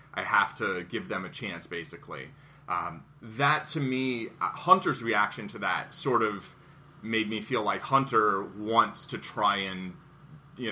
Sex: male